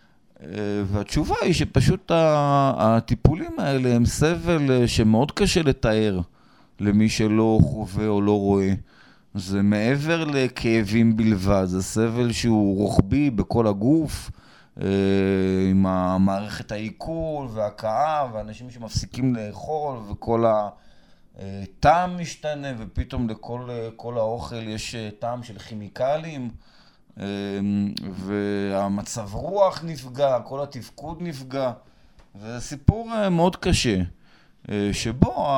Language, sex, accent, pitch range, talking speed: Hebrew, male, Polish, 105-140 Hz, 90 wpm